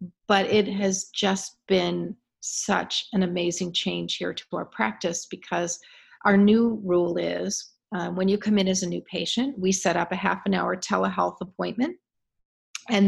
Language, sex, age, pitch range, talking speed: English, female, 40-59, 175-205 Hz, 170 wpm